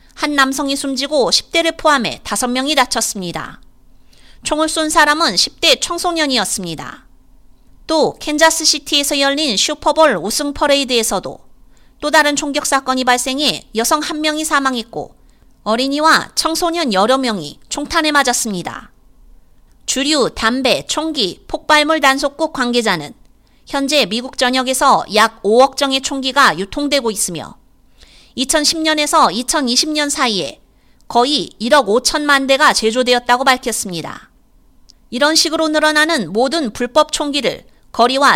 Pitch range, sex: 240-305 Hz, female